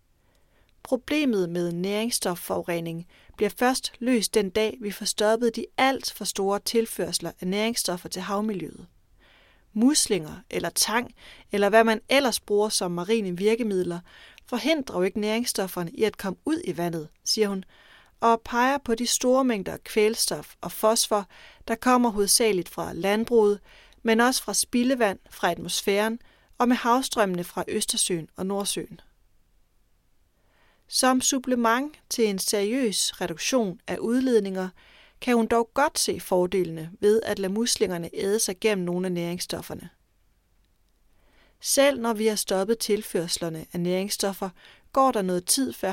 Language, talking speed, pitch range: Danish, 140 wpm, 180-230 Hz